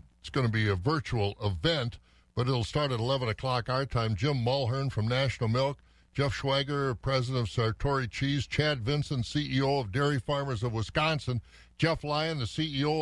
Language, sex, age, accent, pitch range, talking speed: English, male, 60-79, American, 100-135 Hz, 175 wpm